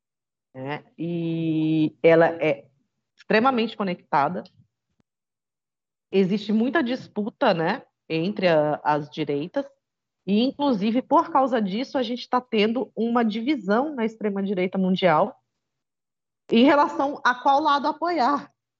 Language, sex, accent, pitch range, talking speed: Portuguese, female, Brazilian, 170-230 Hz, 110 wpm